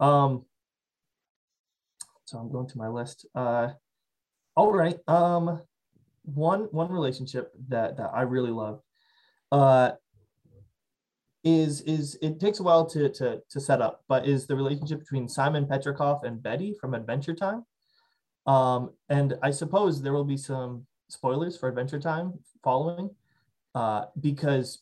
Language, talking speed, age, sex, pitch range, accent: English, 140 wpm, 20-39, male, 125-155 Hz, American